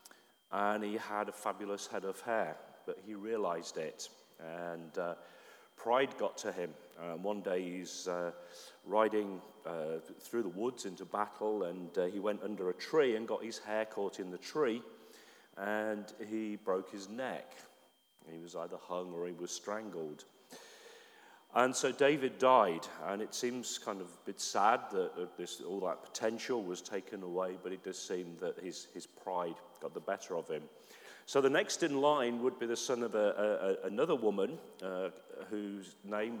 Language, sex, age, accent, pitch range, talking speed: English, male, 40-59, British, 95-145 Hz, 175 wpm